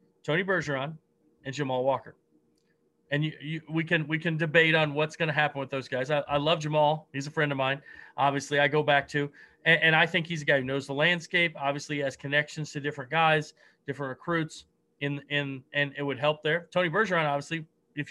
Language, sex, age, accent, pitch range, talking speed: English, male, 30-49, American, 140-170 Hz, 215 wpm